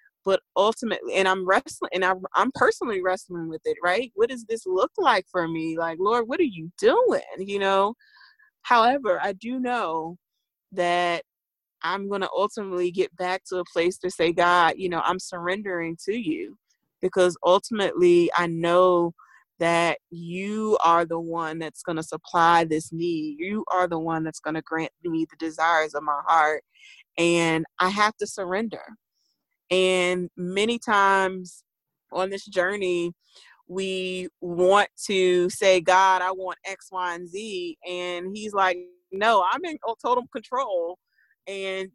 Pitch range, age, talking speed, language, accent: 170-210 Hz, 30-49, 155 wpm, English, American